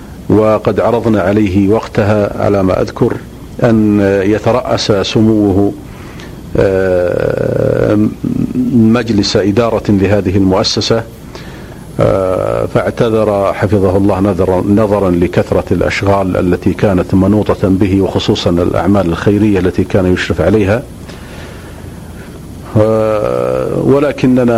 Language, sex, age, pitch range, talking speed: Arabic, male, 50-69, 95-110 Hz, 80 wpm